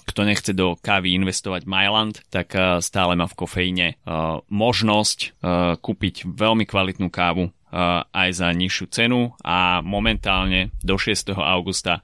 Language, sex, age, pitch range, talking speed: Slovak, male, 20-39, 90-115 Hz, 125 wpm